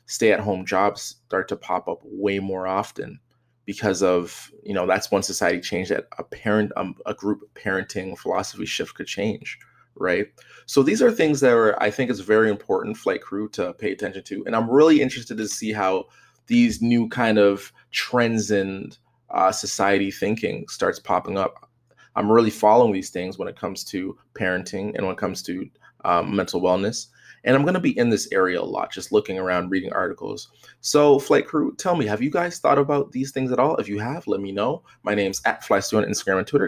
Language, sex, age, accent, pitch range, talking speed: English, male, 20-39, American, 100-125 Hz, 210 wpm